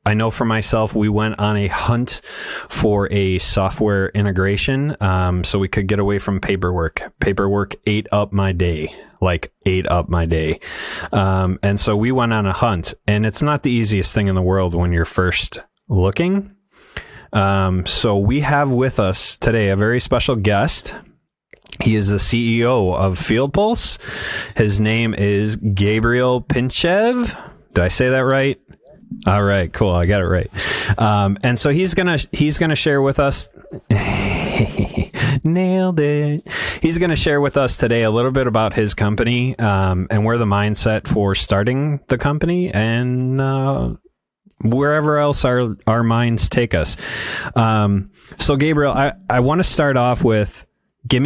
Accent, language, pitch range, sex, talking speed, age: American, English, 100-135 Hz, male, 165 wpm, 30-49